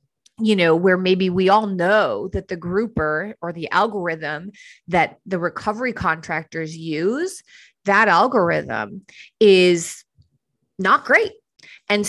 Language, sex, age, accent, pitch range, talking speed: English, female, 30-49, American, 185-225 Hz, 120 wpm